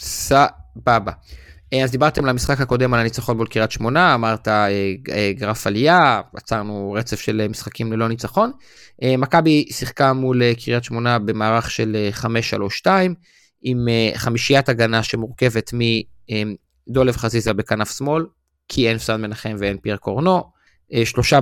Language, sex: Hebrew, male